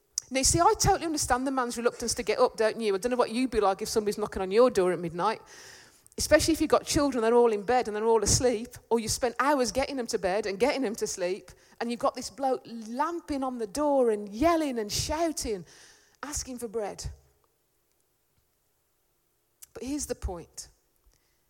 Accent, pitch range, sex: British, 215-275 Hz, female